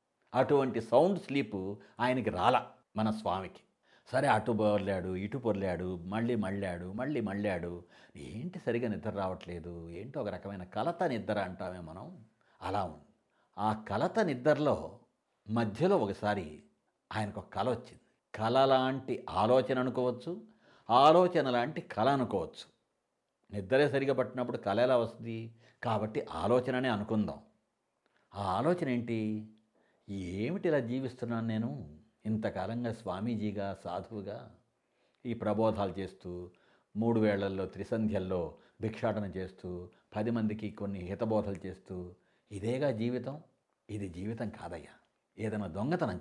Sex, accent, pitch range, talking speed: male, native, 100-125 Hz, 105 wpm